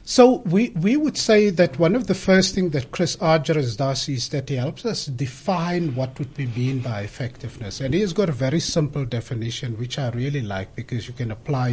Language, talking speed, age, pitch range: English, 220 wpm, 60-79, 125-165 Hz